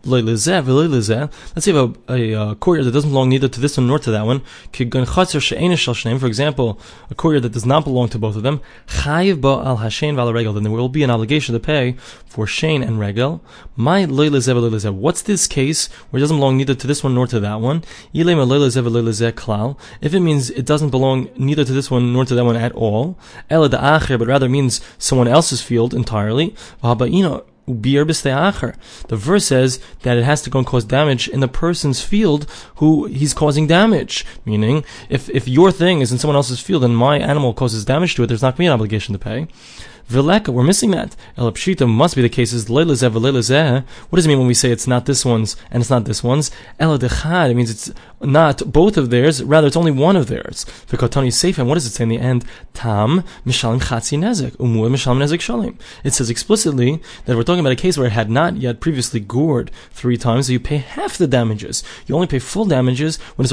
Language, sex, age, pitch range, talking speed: English, male, 20-39, 120-155 Hz, 190 wpm